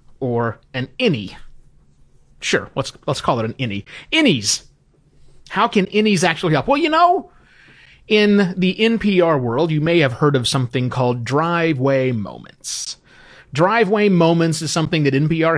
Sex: male